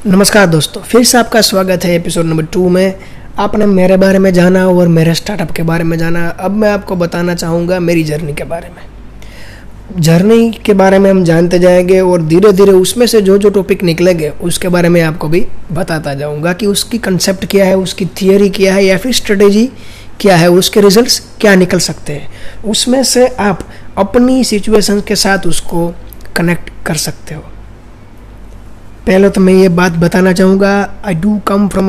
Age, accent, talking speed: 20-39, native, 185 wpm